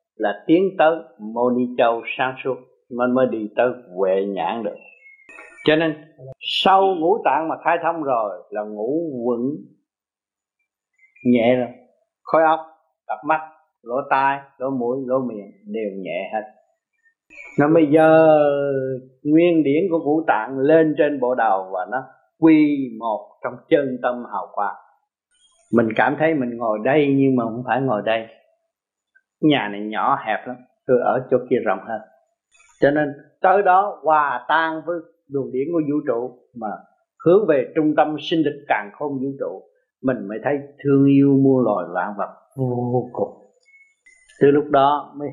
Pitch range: 130-170 Hz